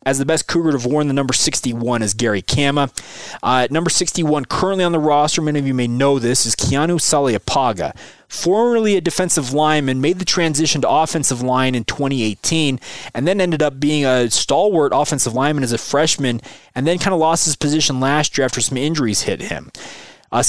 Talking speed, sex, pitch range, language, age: 200 wpm, male, 125-160 Hz, English, 20-39